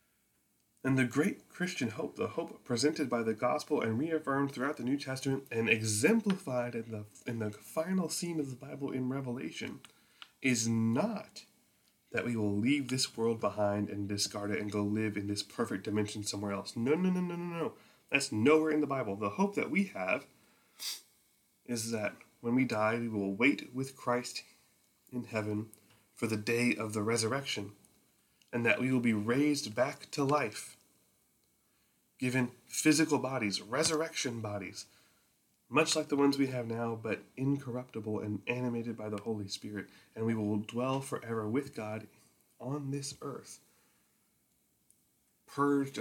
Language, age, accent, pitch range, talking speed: English, 30-49, American, 110-140 Hz, 165 wpm